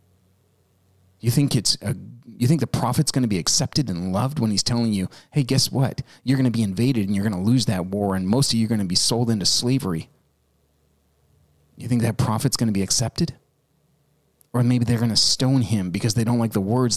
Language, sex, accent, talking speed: English, male, American, 220 wpm